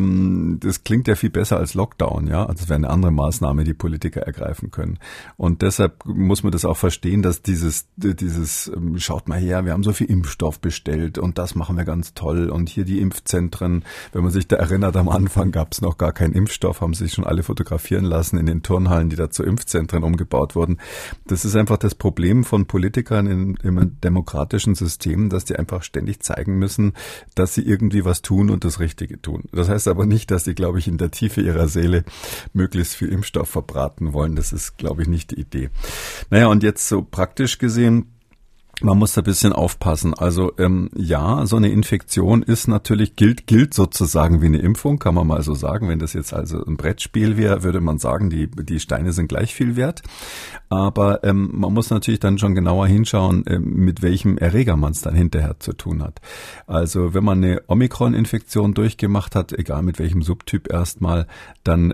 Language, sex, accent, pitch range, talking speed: German, male, German, 85-100 Hz, 200 wpm